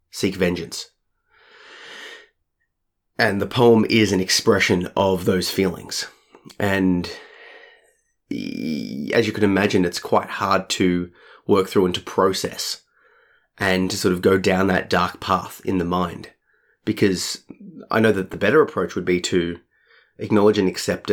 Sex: male